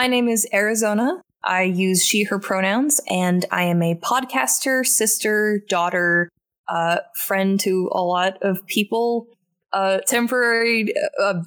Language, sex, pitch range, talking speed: English, female, 165-205 Hz, 130 wpm